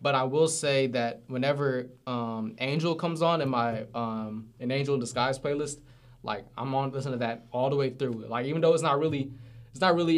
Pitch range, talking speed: 120-135 Hz, 220 wpm